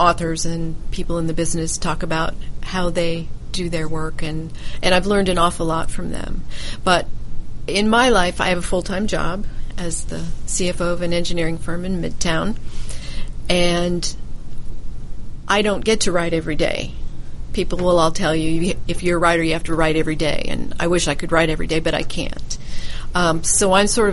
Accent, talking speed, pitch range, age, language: American, 195 wpm, 160-175 Hz, 40-59, English